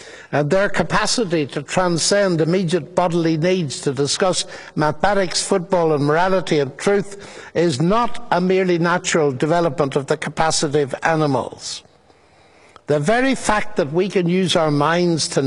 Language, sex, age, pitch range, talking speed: English, male, 60-79, 155-190 Hz, 145 wpm